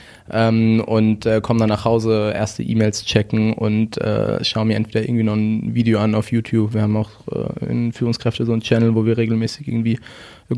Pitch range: 110-120 Hz